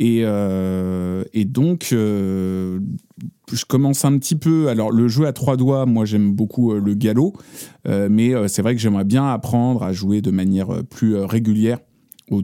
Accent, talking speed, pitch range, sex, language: French, 175 wpm, 95-120 Hz, male, French